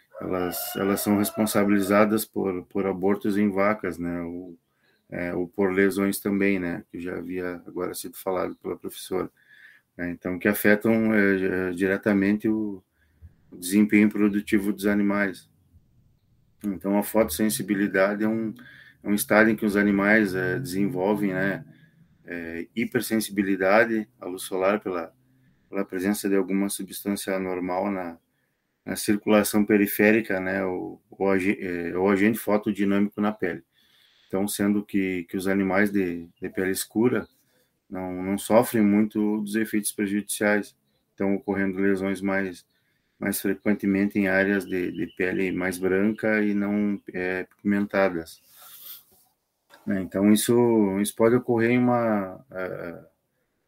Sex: male